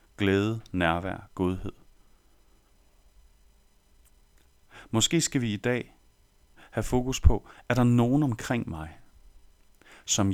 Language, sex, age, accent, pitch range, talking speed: Danish, male, 30-49, native, 90-125 Hz, 100 wpm